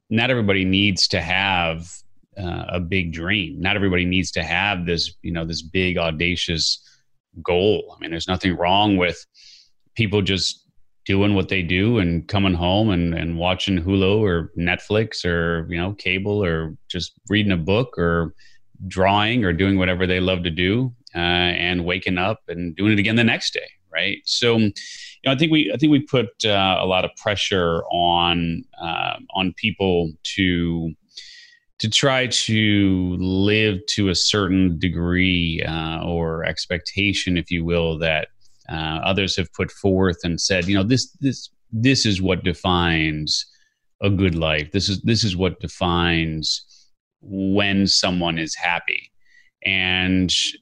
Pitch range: 85-105 Hz